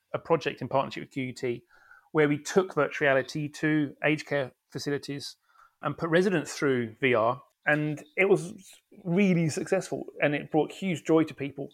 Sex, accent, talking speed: male, British, 165 wpm